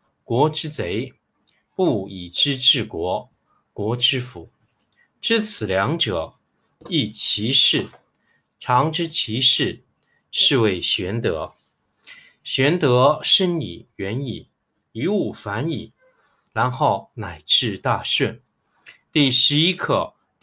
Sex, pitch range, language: male, 105-150 Hz, Chinese